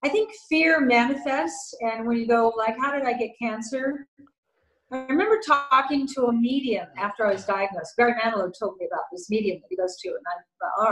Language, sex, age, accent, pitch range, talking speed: English, female, 40-59, American, 205-260 Hz, 215 wpm